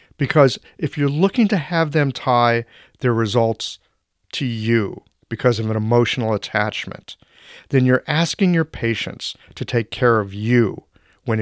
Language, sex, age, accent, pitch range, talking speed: English, male, 40-59, American, 110-145 Hz, 145 wpm